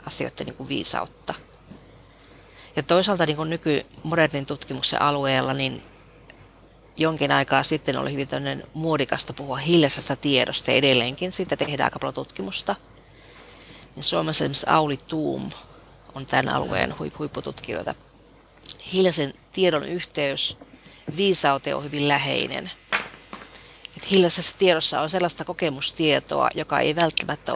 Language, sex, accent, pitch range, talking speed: Finnish, female, native, 135-165 Hz, 105 wpm